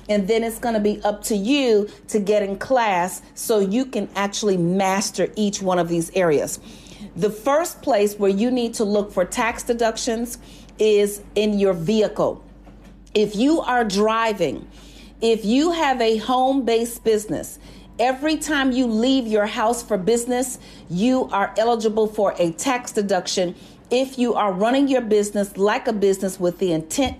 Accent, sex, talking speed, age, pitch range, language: American, female, 165 wpm, 40-59, 200-245 Hz, English